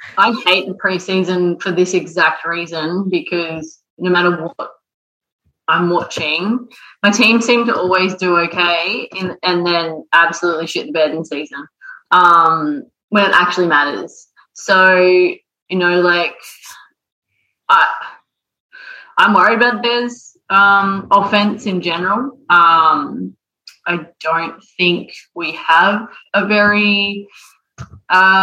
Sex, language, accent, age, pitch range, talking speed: female, English, Australian, 20-39, 165-190 Hz, 120 wpm